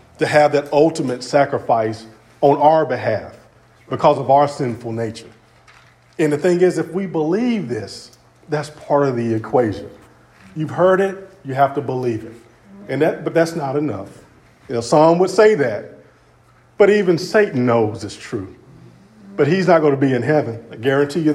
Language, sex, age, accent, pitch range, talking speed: English, male, 40-59, American, 125-180 Hz, 175 wpm